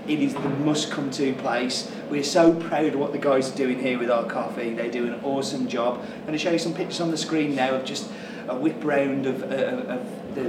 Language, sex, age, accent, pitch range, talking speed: English, male, 30-49, British, 135-220 Hz, 245 wpm